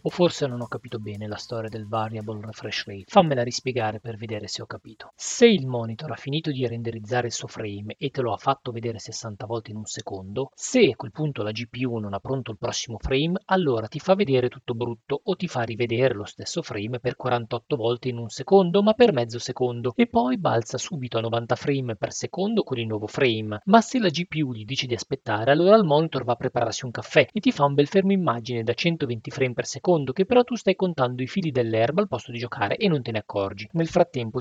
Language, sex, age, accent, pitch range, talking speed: Italian, male, 40-59, native, 115-150 Hz, 235 wpm